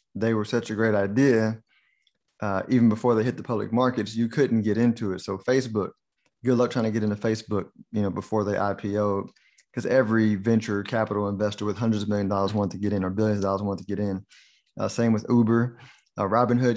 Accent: American